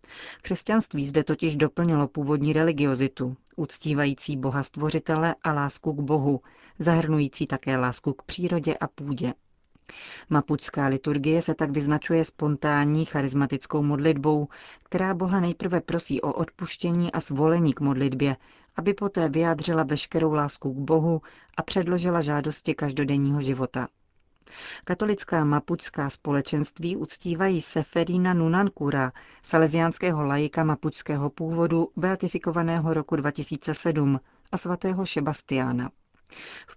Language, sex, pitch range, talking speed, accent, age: Czech, female, 140-165 Hz, 110 wpm, native, 40-59